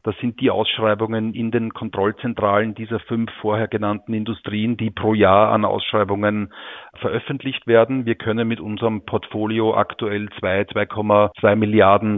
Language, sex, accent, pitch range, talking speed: German, male, Austrian, 105-115 Hz, 135 wpm